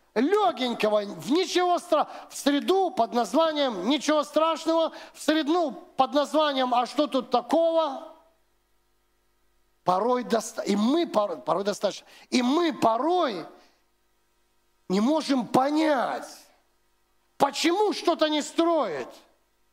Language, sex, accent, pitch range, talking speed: Russian, male, native, 255-325 Hz, 105 wpm